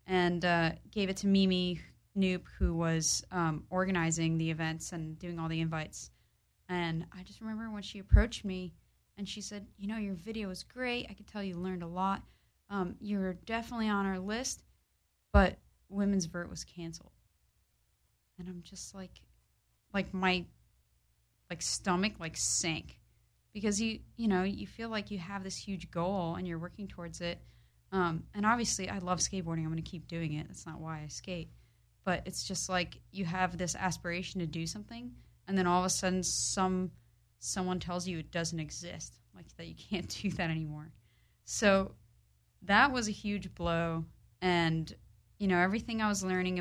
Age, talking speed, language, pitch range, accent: 30-49, 180 wpm, English, 160-195 Hz, American